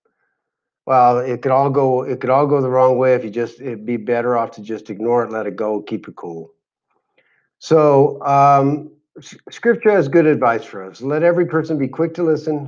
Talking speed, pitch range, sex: 210 wpm, 115-145 Hz, male